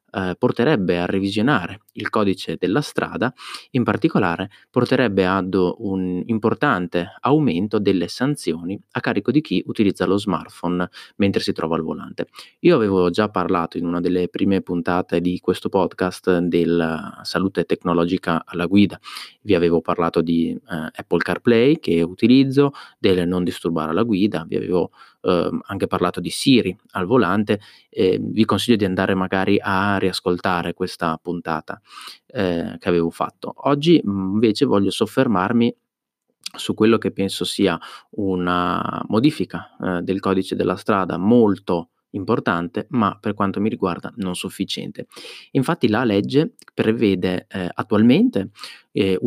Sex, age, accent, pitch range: male, 30-49, native, 90-110 Hz